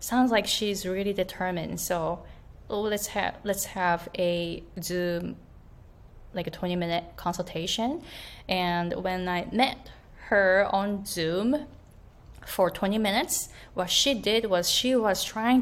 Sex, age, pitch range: female, 20-39, 190-265 Hz